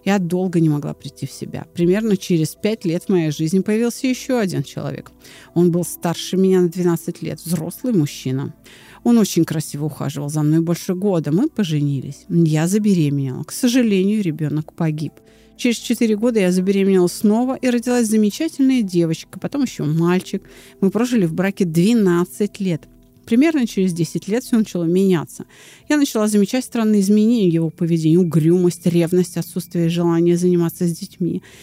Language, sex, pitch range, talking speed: Russian, female, 165-205 Hz, 160 wpm